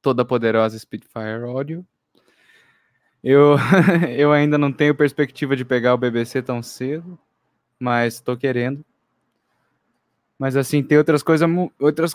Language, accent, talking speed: Portuguese, Brazilian, 125 wpm